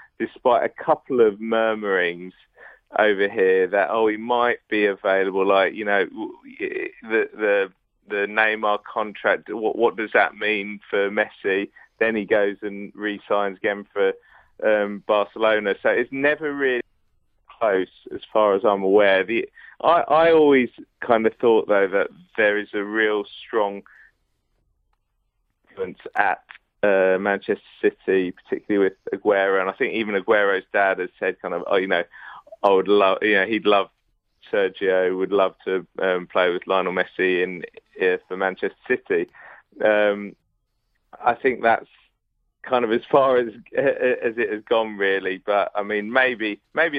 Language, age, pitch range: English, 30-49, 100-125 Hz